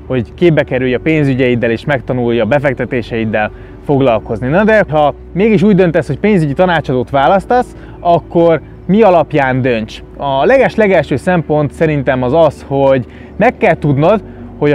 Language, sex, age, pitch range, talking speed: Hungarian, male, 20-39, 135-180 Hz, 140 wpm